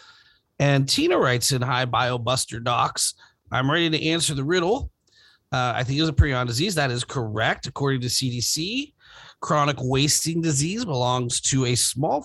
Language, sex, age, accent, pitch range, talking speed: English, male, 30-49, American, 120-155 Hz, 170 wpm